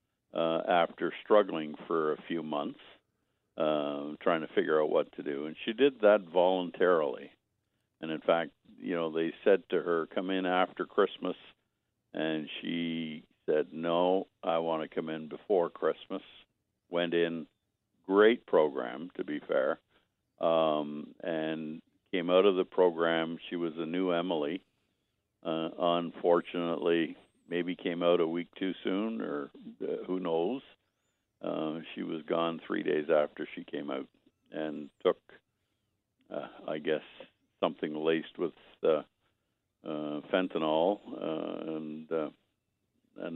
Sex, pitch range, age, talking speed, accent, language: male, 80-90 Hz, 60-79, 140 wpm, American, English